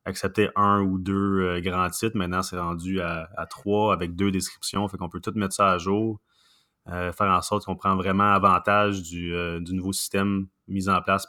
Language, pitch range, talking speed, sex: French, 95-105 Hz, 215 wpm, male